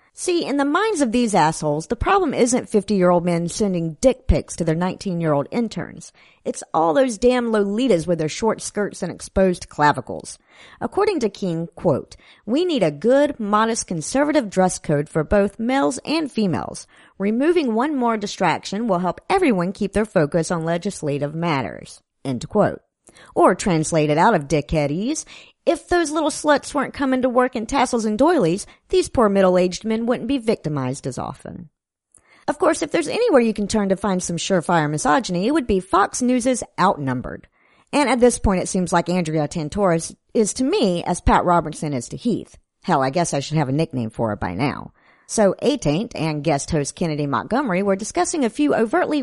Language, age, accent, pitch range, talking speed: English, 50-69, American, 165-245 Hz, 185 wpm